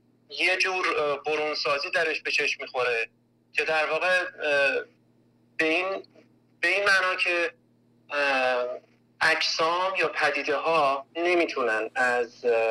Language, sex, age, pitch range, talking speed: Persian, male, 30-49, 130-165 Hz, 100 wpm